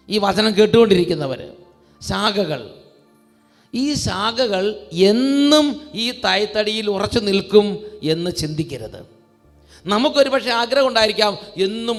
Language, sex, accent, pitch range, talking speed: English, male, Indian, 155-205 Hz, 120 wpm